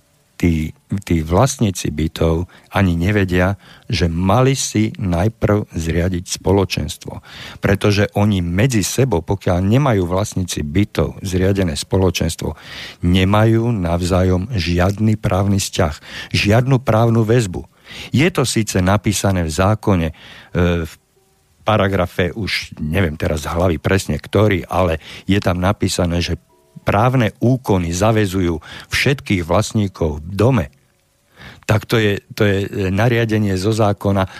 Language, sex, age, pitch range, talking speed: Slovak, male, 50-69, 90-110 Hz, 115 wpm